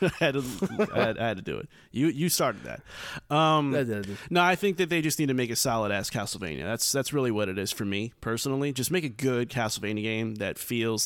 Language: English